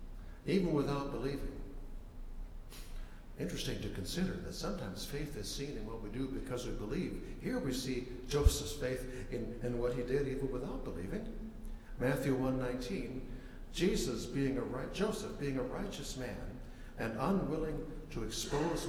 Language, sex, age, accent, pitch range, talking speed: English, male, 60-79, American, 105-140 Hz, 145 wpm